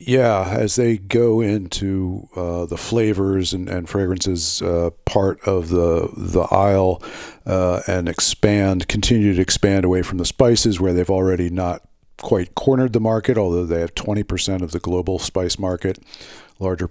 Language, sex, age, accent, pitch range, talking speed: English, male, 50-69, American, 90-105 Hz, 165 wpm